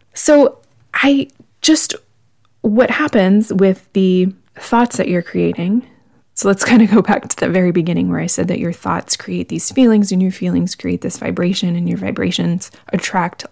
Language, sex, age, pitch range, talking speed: English, female, 20-39, 180-225 Hz, 180 wpm